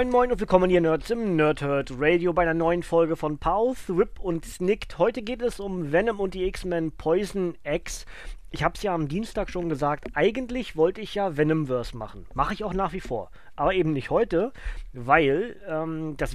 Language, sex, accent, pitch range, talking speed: German, male, German, 150-195 Hz, 200 wpm